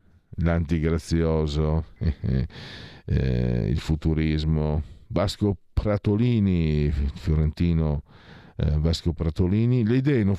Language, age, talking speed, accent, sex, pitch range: Italian, 50-69, 85 wpm, native, male, 80-110 Hz